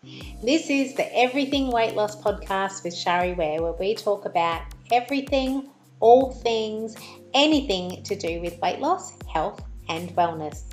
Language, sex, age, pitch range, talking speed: English, female, 30-49, 175-225 Hz, 145 wpm